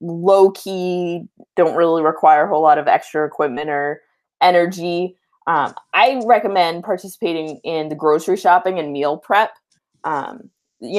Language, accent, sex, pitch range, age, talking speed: English, American, female, 160-215 Hz, 20-39, 135 wpm